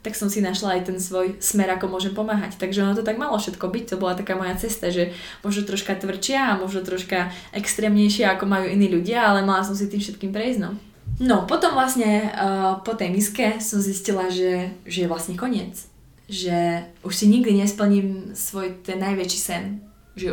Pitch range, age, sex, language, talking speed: 180-210 Hz, 20-39, female, Slovak, 195 wpm